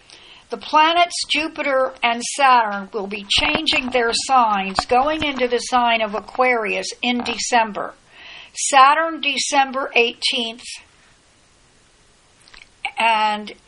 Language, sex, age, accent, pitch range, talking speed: English, female, 60-79, American, 230-275 Hz, 95 wpm